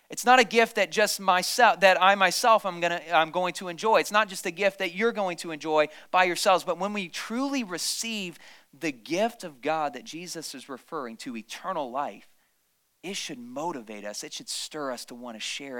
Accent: American